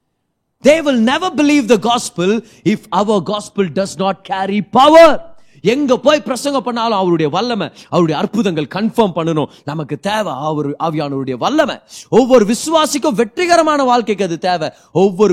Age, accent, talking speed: 30-49, native, 170 wpm